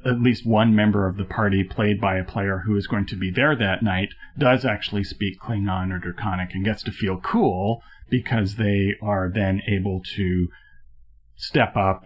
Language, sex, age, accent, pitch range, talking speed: English, male, 40-59, American, 95-115 Hz, 190 wpm